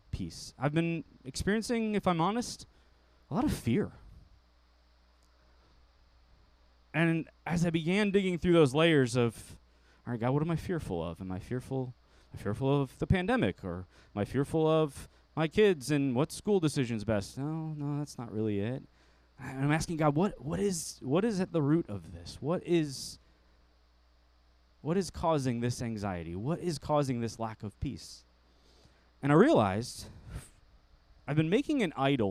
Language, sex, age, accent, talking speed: English, male, 20-39, American, 165 wpm